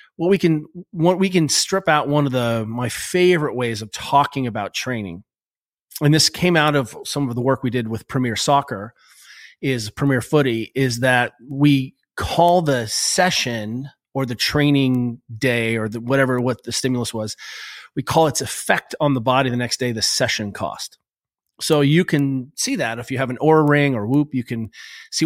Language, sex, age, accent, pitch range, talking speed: English, male, 30-49, American, 120-150 Hz, 190 wpm